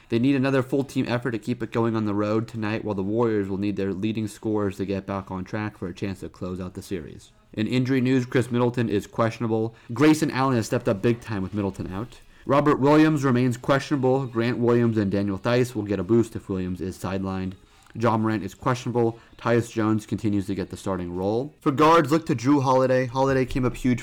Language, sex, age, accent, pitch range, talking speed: English, male, 30-49, American, 100-125 Hz, 225 wpm